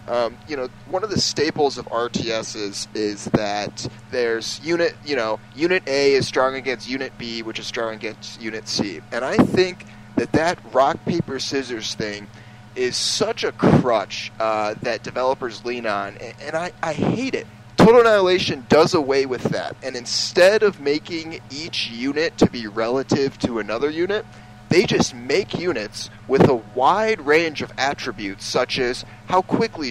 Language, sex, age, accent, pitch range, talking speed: English, male, 30-49, American, 110-155 Hz, 170 wpm